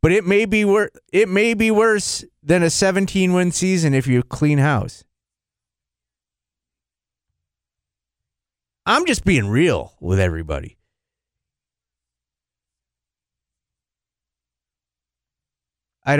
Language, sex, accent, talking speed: English, male, American, 80 wpm